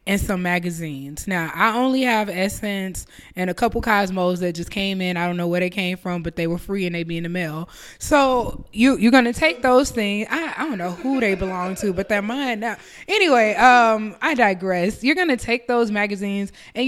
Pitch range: 190-245 Hz